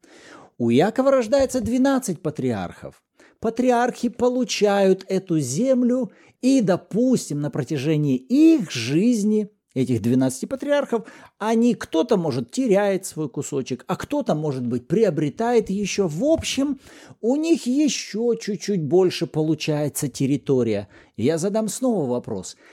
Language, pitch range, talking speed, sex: Russian, 135-220 Hz, 115 wpm, male